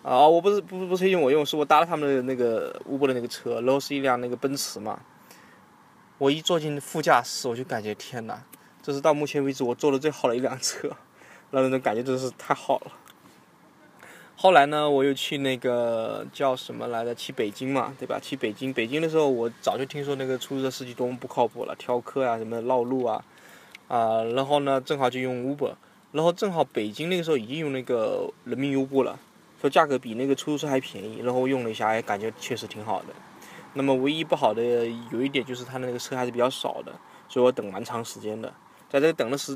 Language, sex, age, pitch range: Chinese, male, 20-39, 120-145 Hz